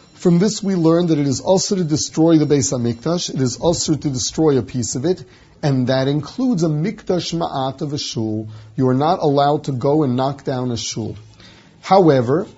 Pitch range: 135-170 Hz